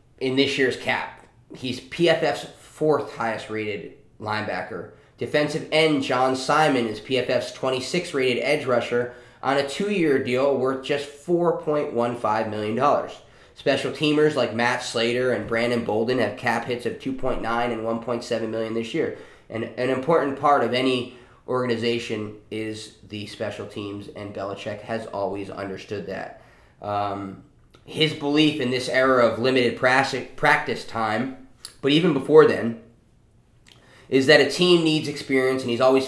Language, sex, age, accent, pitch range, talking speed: English, male, 20-39, American, 115-135 Hz, 145 wpm